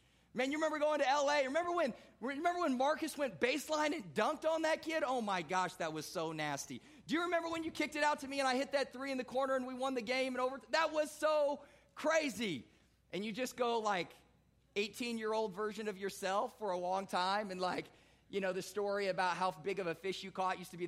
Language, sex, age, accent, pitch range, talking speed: English, male, 30-49, American, 175-240 Hz, 245 wpm